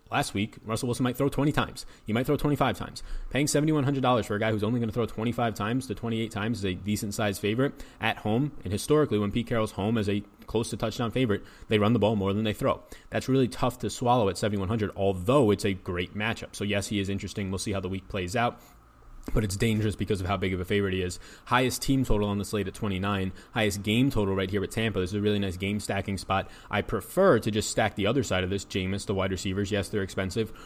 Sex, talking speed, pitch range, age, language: male, 250 wpm, 100-115 Hz, 20-39, English